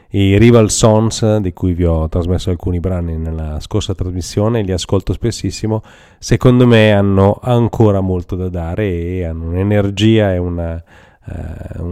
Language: Italian